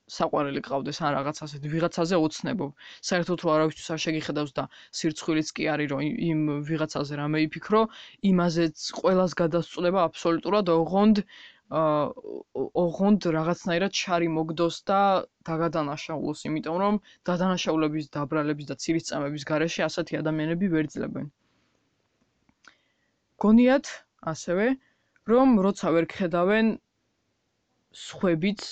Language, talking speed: English, 75 wpm